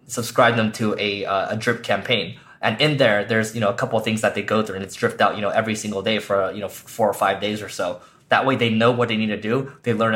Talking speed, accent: 305 wpm, American